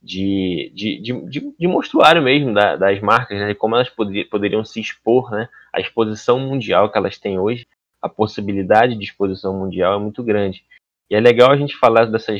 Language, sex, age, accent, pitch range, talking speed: Portuguese, male, 20-39, Brazilian, 100-130 Hz, 190 wpm